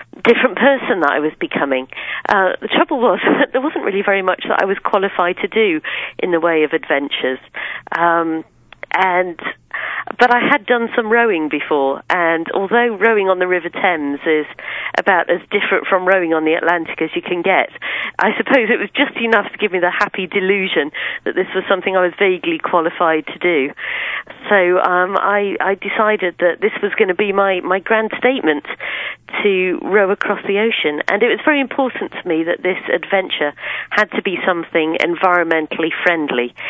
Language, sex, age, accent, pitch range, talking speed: English, female, 40-59, British, 160-200 Hz, 185 wpm